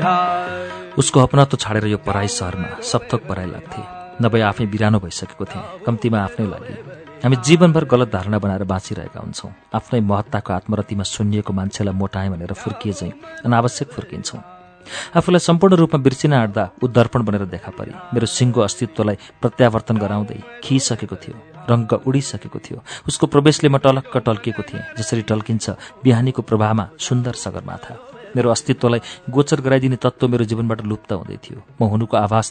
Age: 40-59